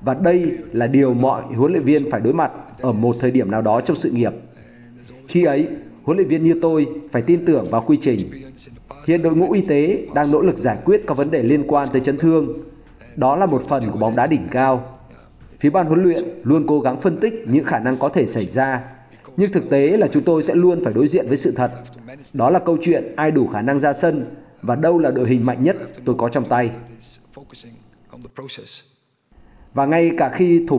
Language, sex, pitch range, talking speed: Vietnamese, male, 130-165 Hz, 225 wpm